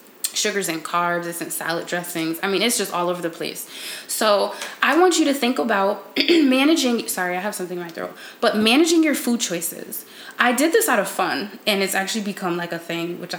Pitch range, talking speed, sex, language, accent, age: 180-250 Hz, 220 wpm, female, English, American, 20-39